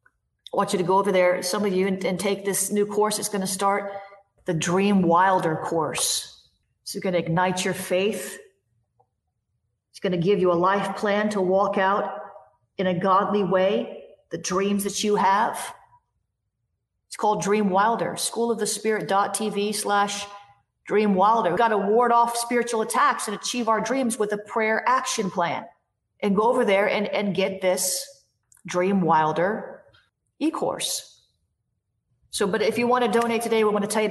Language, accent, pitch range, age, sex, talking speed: English, American, 175-210 Hz, 40-59, female, 170 wpm